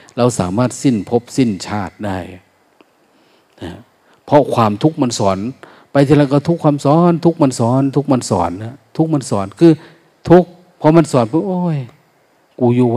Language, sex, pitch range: Thai, male, 110-155 Hz